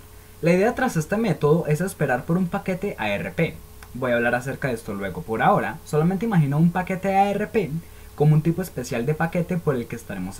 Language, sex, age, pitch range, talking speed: Spanish, male, 20-39, 125-185 Hz, 200 wpm